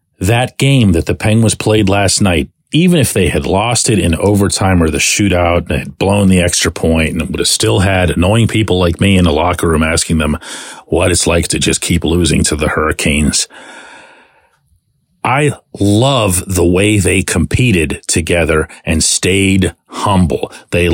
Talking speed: 175 wpm